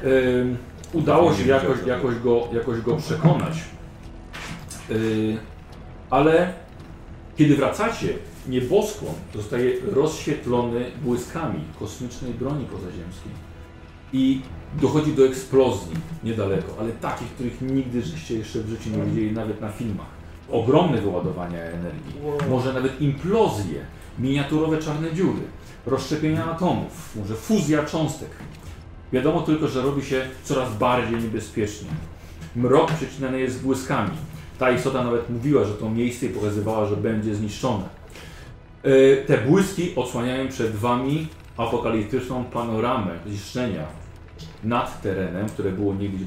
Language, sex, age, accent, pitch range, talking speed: Polish, male, 40-59, native, 105-135 Hz, 110 wpm